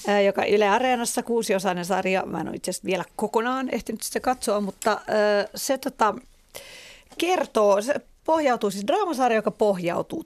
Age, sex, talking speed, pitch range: 40-59, female, 135 wpm, 185-240 Hz